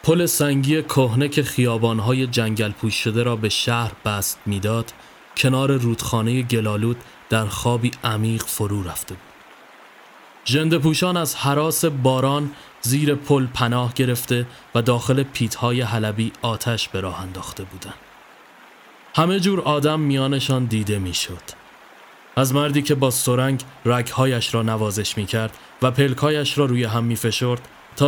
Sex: male